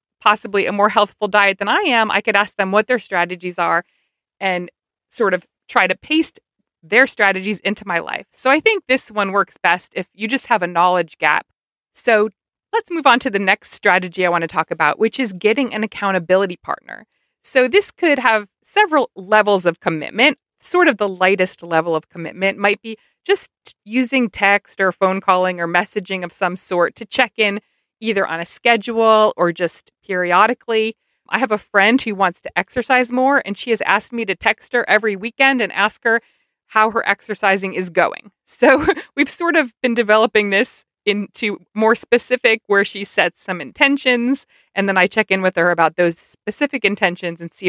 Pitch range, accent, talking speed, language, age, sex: 185-235 Hz, American, 195 wpm, English, 30-49, female